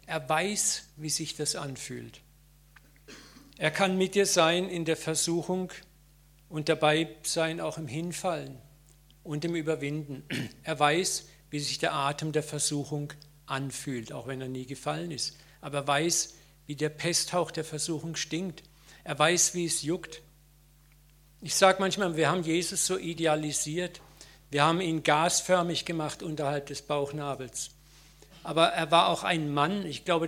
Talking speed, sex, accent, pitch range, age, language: 150 wpm, male, German, 150-170 Hz, 50-69, German